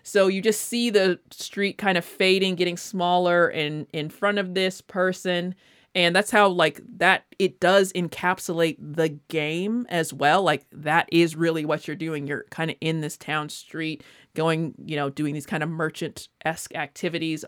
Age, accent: 30-49, American